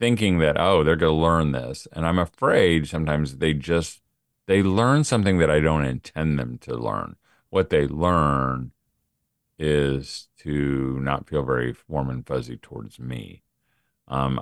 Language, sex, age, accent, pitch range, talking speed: English, male, 40-59, American, 75-100 Hz, 160 wpm